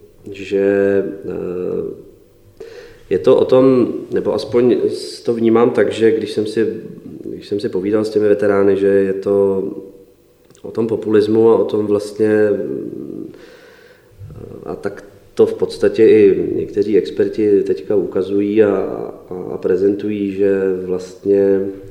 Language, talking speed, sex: Czech, 125 wpm, male